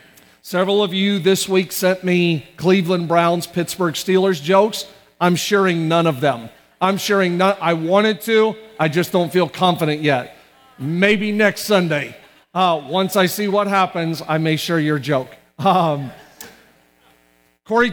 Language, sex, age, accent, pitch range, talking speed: English, male, 50-69, American, 135-200 Hz, 150 wpm